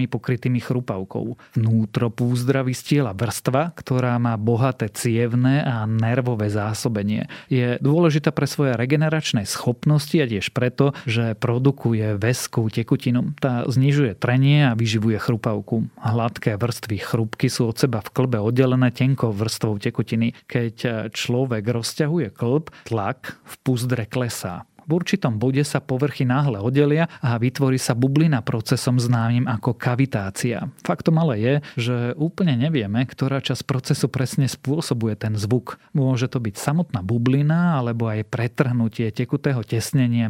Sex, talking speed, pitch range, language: male, 135 wpm, 115-135 Hz, Slovak